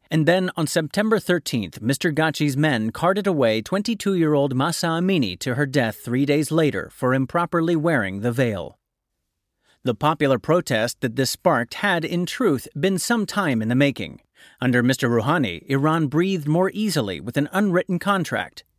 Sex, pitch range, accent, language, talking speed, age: male, 130-180 Hz, American, English, 160 wpm, 40-59